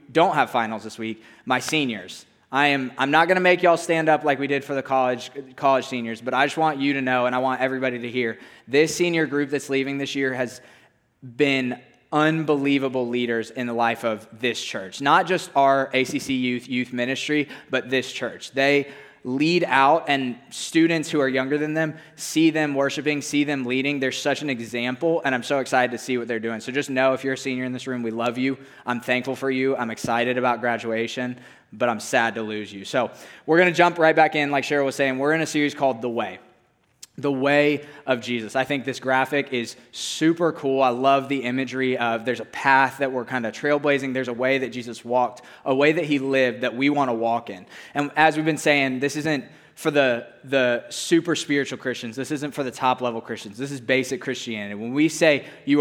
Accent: American